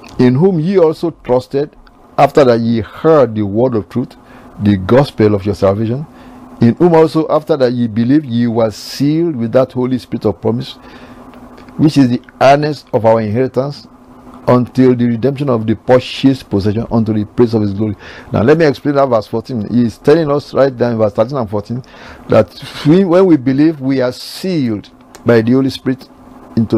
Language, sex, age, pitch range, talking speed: English, male, 60-79, 110-130 Hz, 195 wpm